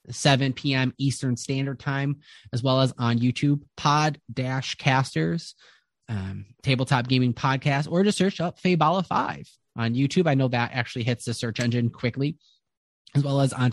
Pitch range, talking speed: 120-140 Hz, 155 wpm